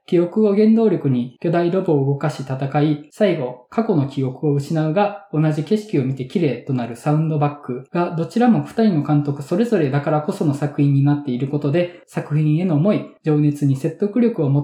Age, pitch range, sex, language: 20-39, 140-185 Hz, male, Japanese